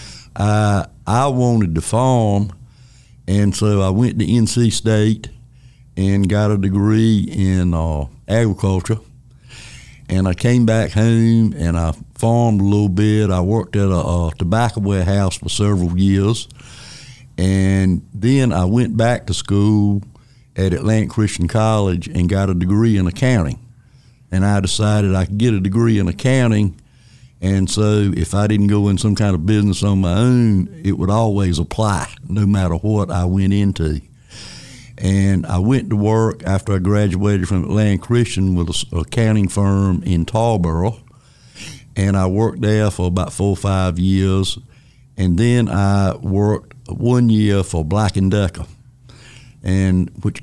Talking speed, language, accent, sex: 155 wpm, English, American, male